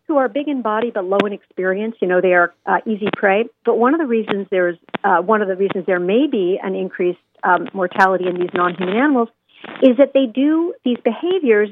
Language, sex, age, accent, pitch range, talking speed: English, female, 50-69, American, 195-255 Hz, 225 wpm